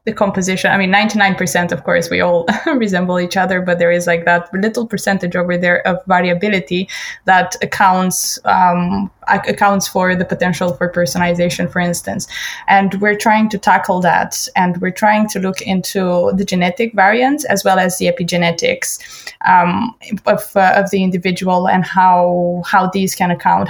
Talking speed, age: 170 wpm, 20-39